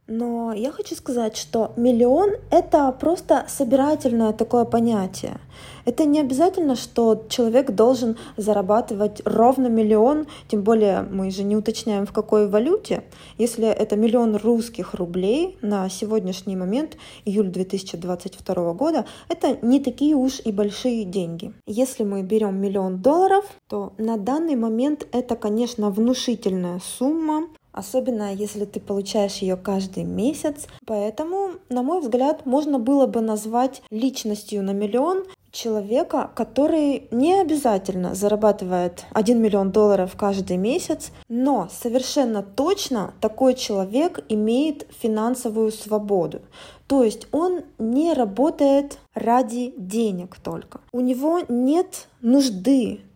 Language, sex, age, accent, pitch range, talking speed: Russian, female, 20-39, native, 210-270 Hz, 120 wpm